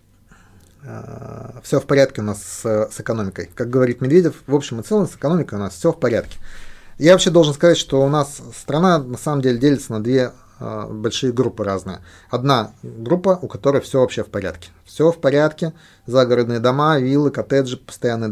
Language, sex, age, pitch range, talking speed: Russian, male, 30-49, 110-145 Hz, 180 wpm